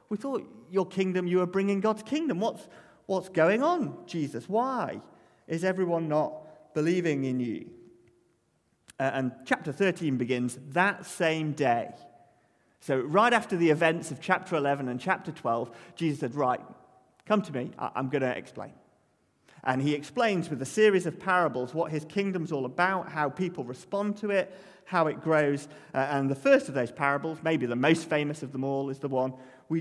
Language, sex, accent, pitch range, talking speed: English, male, British, 130-180 Hz, 175 wpm